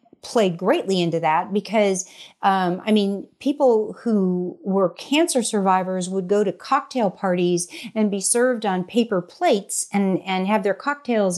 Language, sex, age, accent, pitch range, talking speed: English, female, 40-59, American, 180-230 Hz, 155 wpm